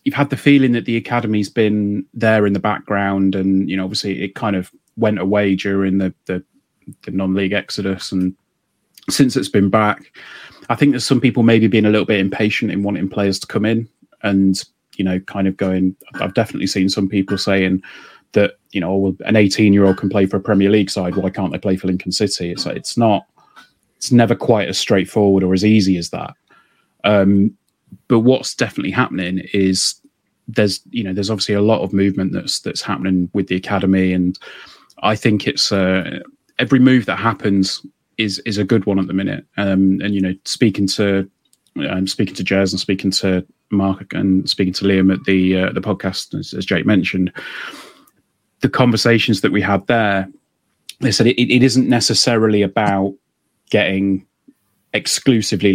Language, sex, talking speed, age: English, male, 190 wpm, 30-49